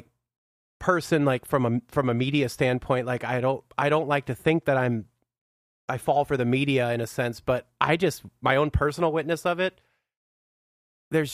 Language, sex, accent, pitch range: English, male, American, 120-150 Hz